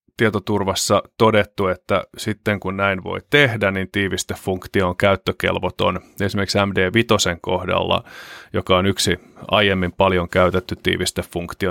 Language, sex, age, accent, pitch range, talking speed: Finnish, male, 30-49, native, 95-110 Hz, 115 wpm